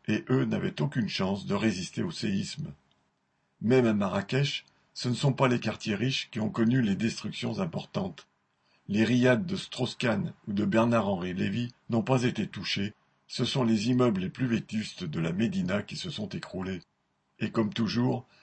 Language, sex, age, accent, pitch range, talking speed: French, male, 50-69, French, 105-125 Hz, 175 wpm